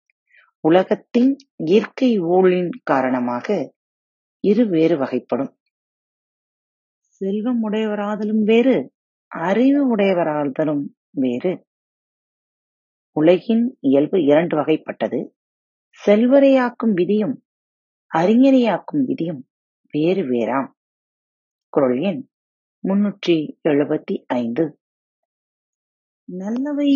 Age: 30-49